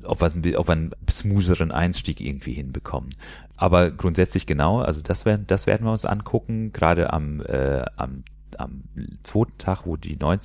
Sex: male